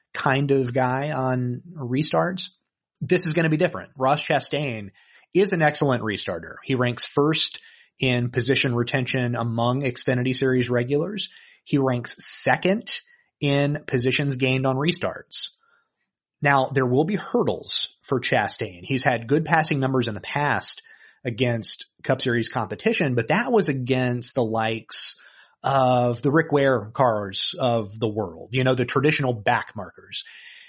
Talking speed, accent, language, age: 145 wpm, American, English, 30-49